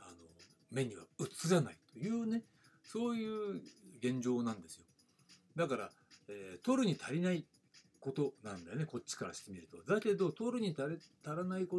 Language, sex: Japanese, male